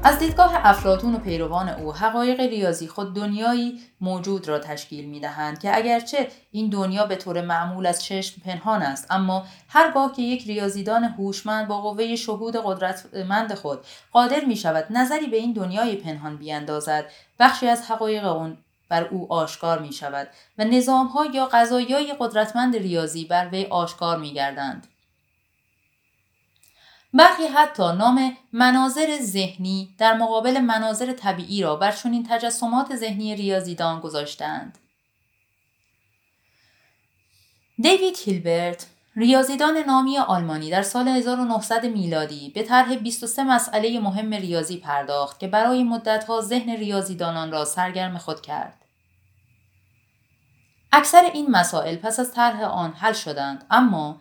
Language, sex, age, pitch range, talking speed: Persian, female, 30-49, 165-240 Hz, 130 wpm